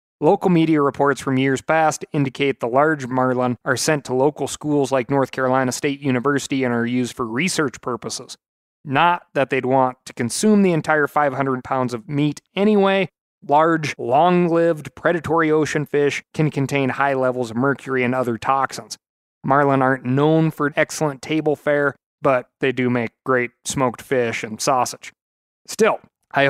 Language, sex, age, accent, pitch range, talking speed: English, male, 30-49, American, 125-150 Hz, 160 wpm